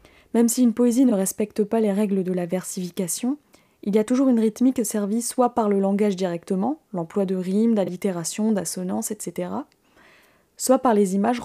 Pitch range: 195-240 Hz